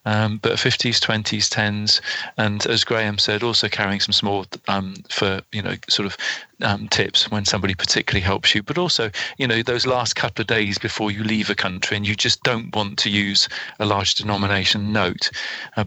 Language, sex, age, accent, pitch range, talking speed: English, male, 40-59, British, 100-110 Hz, 195 wpm